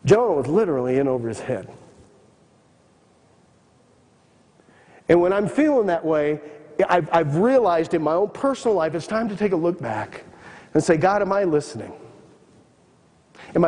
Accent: American